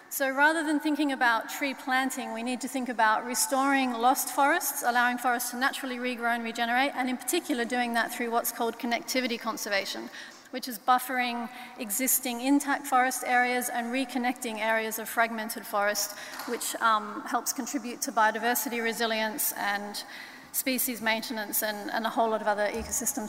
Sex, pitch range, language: female, 225-265 Hz, English